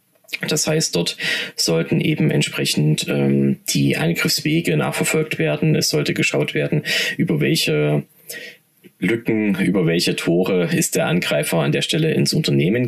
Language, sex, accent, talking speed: German, male, German, 135 wpm